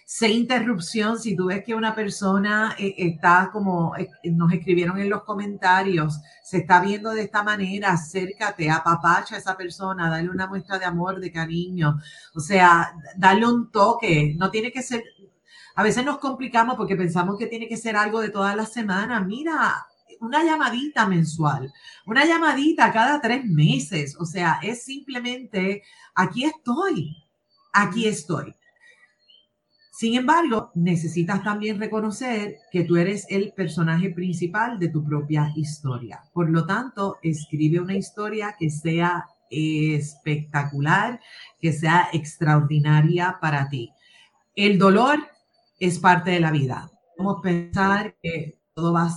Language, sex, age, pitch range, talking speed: Spanish, female, 40-59, 165-215 Hz, 145 wpm